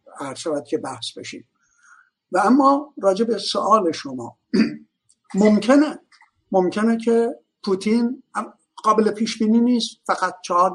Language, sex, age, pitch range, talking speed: Persian, male, 60-79, 175-235 Hz, 110 wpm